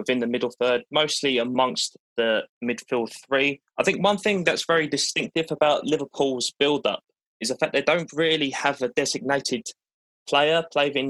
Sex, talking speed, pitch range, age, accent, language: male, 160 wpm, 120-140 Hz, 20-39, British, English